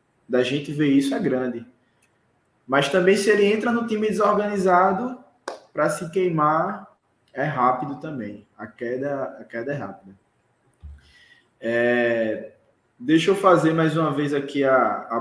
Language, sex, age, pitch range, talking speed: Portuguese, male, 20-39, 115-140 Hz, 135 wpm